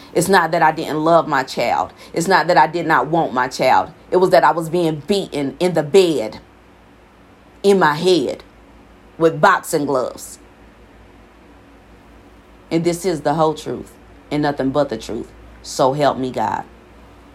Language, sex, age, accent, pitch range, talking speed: English, female, 40-59, American, 125-160 Hz, 165 wpm